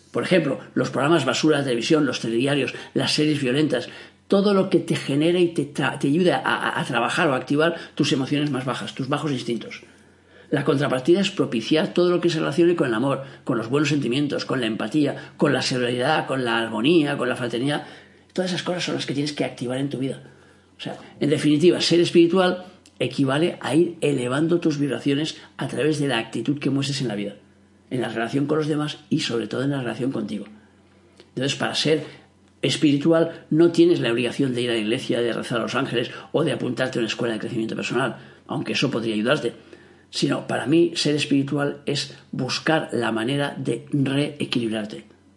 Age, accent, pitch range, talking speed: 50-69, Spanish, 120-160 Hz, 200 wpm